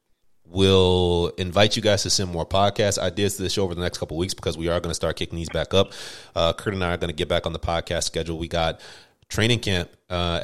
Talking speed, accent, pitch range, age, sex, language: 265 wpm, American, 80-95 Hz, 30-49, male, English